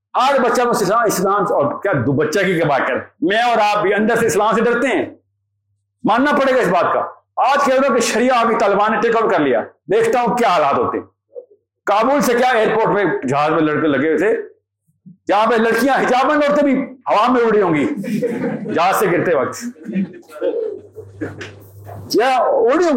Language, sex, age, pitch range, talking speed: Urdu, male, 50-69, 185-305 Hz, 145 wpm